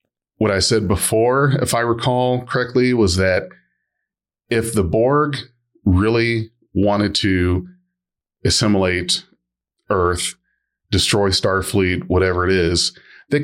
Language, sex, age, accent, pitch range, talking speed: English, male, 30-49, American, 95-120 Hz, 105 wpm